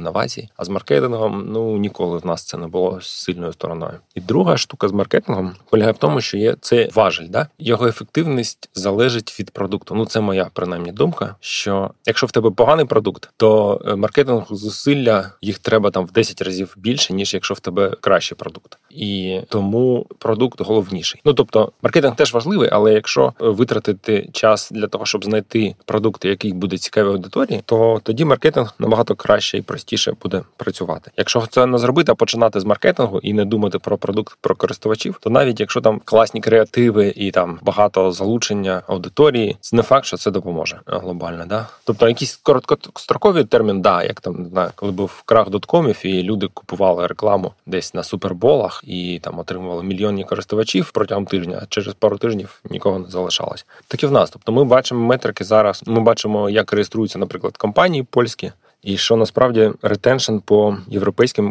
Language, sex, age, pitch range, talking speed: Ukrainian, male, 20-39, 95-115 Hz, 175 wpm